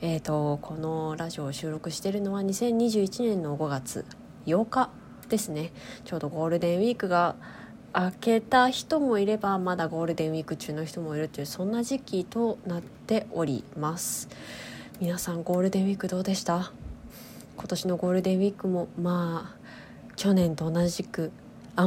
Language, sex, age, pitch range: Japanese, female, 20-39, 165-235 Hz